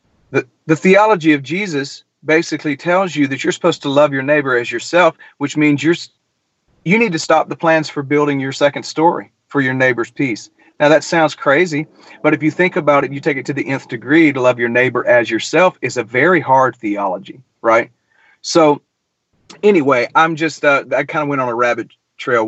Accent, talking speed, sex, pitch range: American, 210 wpm, male, 125-155 Hz